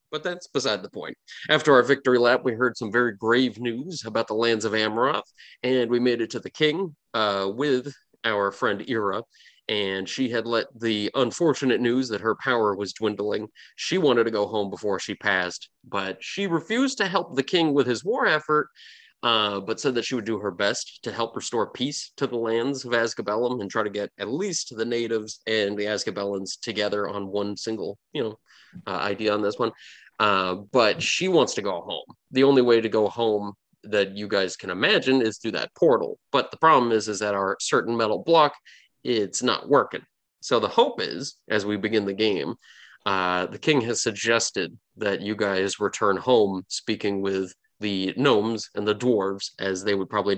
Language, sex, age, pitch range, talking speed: English, male, 30-49, 100-120 Hz, 200 wpm